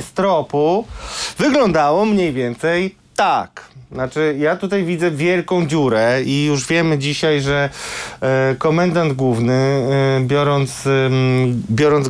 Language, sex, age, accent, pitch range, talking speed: Polish, male, 30-49, native, 125-155 Hz, 100 wpm